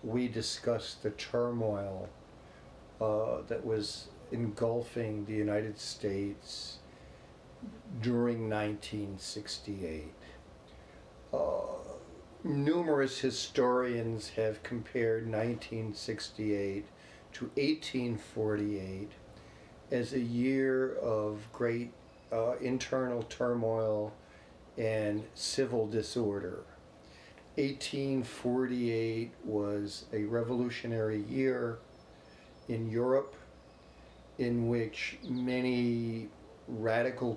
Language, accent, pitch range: English, American, 105-120 Hz